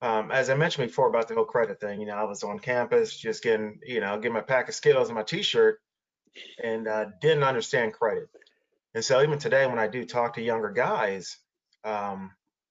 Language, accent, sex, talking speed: English, American, male, 210 wpm